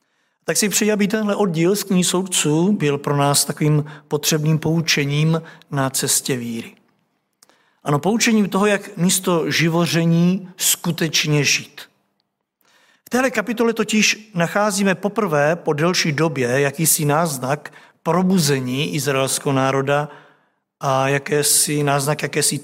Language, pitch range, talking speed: Czech, 145-180 Hz, 110 wpm